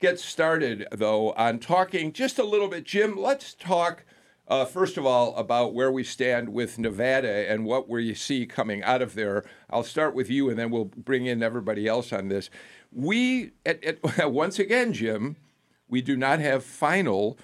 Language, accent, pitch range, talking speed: English, American, 110-155 Hz, 180 wpm